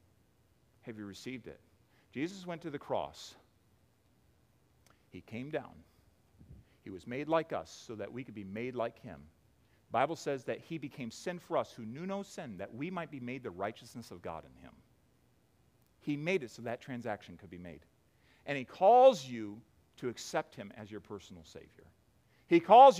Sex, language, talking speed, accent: male, English, 185 wpm, American